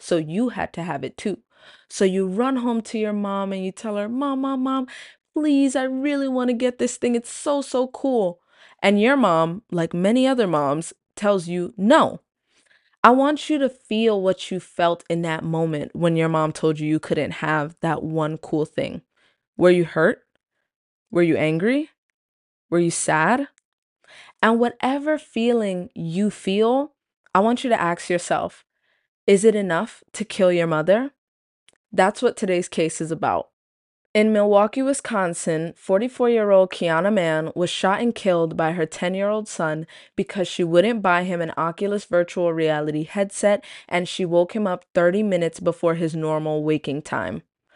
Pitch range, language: 165-225 Hz, English